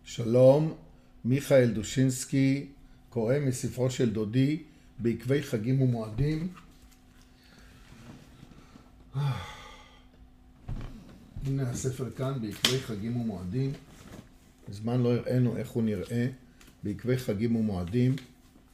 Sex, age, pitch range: male, 50-69, 105-125 Hz